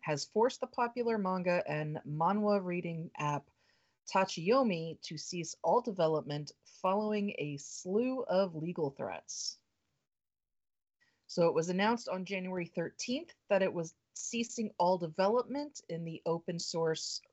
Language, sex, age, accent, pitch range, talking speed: English, female, 30-49, American, 165-215 Hz, 130 wpm